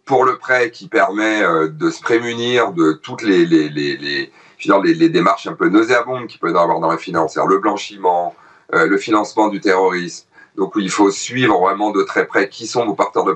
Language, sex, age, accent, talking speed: French, male, 40-59, French, 205 wpm